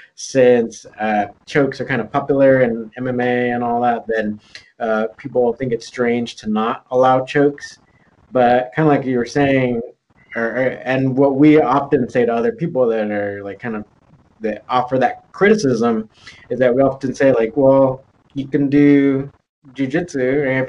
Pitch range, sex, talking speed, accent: 120-140 Hz, male, 170 wpm, American